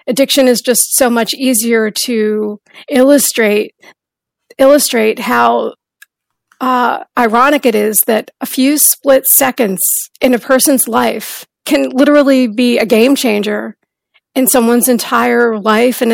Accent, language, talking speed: American, English, 125 wpm